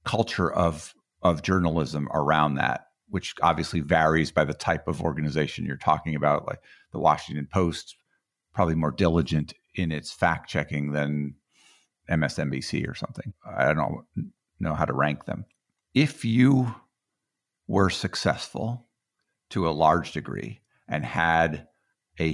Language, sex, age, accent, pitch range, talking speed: English, male, 50-69, American, 80-95 Hz, 135 wpm